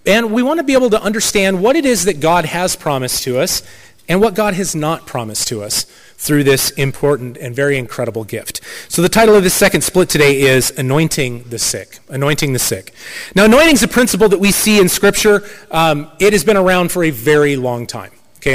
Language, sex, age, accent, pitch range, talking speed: English, male, 30-49, American, 140-195 Hz, 220 wpm